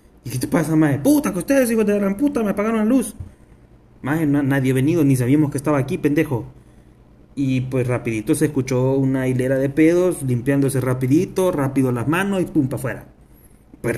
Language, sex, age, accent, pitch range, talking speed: Spanish, male, 30-49, Mexican, 130-165 Hz, 195 wpm